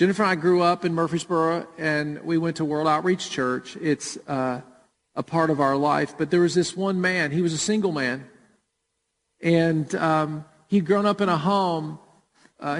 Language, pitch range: English, 155-180 Hz